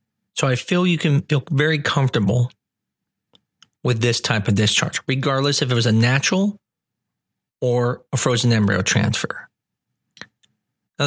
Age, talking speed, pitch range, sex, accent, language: 40-59, 135 wpm, 115-150 Hz, male, American, English